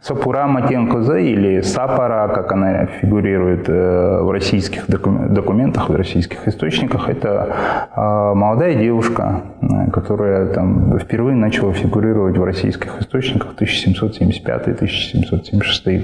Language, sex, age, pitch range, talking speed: Russian, male, 20-39, 95-120 Hz, 100 wpm